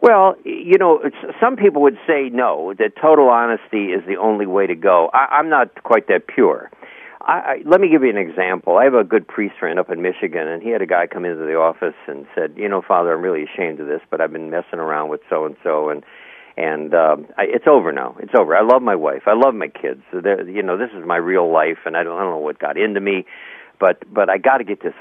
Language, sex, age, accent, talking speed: English, male, 60-79, American, 270 wpm